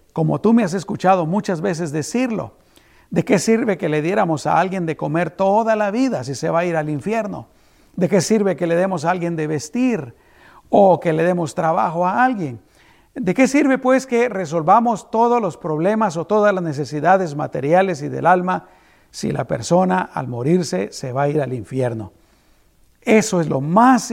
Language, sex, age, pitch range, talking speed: Spanish, male, 50-69, 135-190 Hz, 190 wpm